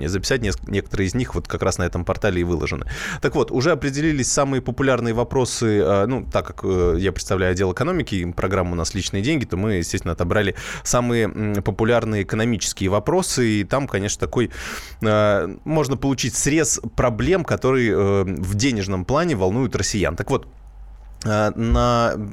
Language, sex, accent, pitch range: Russian, male, native, 95-115 Hz